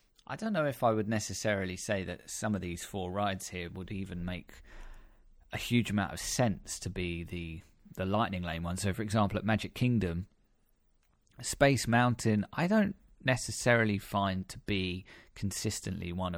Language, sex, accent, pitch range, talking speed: English, male, British, 90-110 Hz, 170 wpm